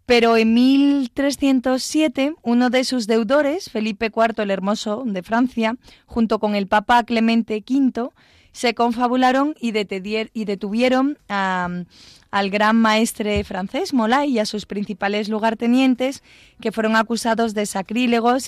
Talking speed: 125 wpm